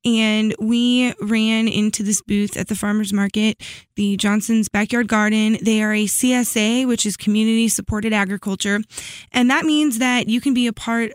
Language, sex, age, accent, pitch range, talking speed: English, female, 20-39, American, 200-230 Hz, 170 wpm